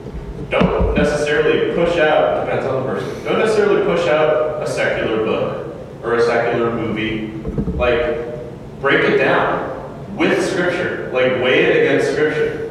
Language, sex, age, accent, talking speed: English, male, 30-49, American, 140 wpm